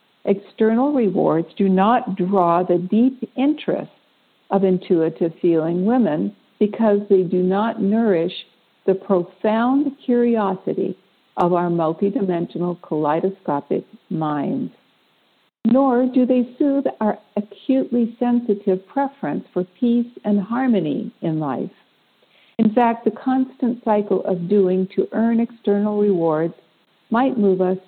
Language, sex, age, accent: English, female, 60-79, American